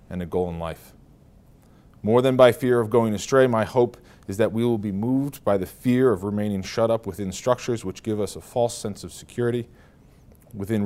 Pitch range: 85-110 Hz